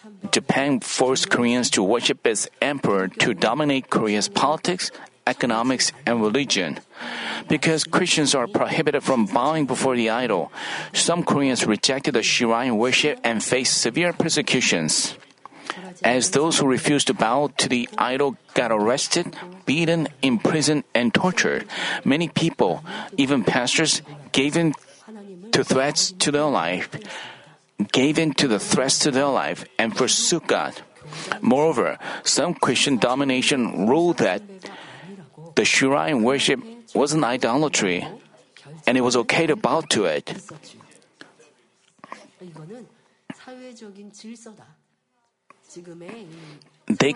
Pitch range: 130-185 Hz